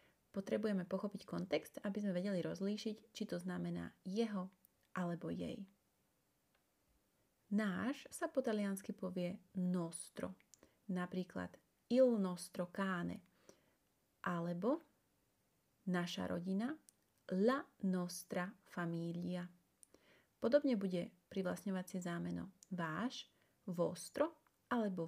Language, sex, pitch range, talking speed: Slovak, female, 175-230 Hz, 85 wpm